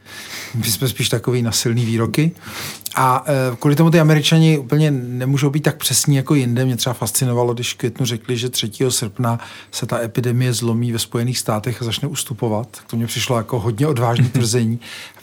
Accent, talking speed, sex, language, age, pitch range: native, 185 wpm, male, Czech, 50-69, 115-140 Hz